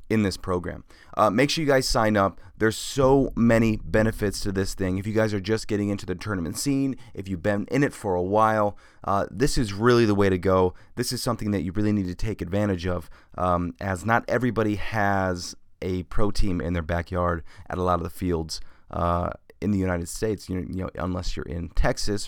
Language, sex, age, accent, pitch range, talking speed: English, male, 30-49, American, 90-115 Hz, 225 wpm